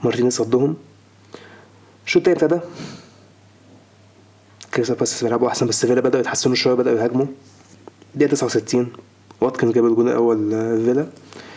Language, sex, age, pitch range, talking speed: Arabic, male, 20-39, 105-155 Hz, 120 wpm